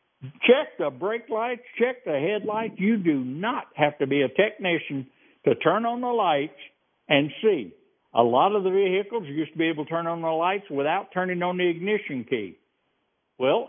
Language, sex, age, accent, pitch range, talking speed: English, male, 60-79, American, 145-200 Hz, 190 wpm